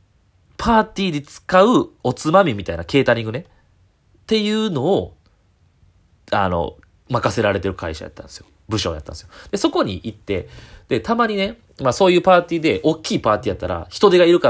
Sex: male